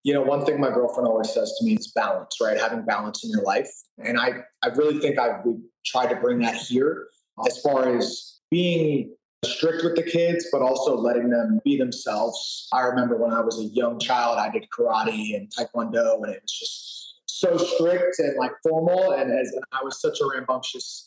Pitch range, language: 135-225 Hz, English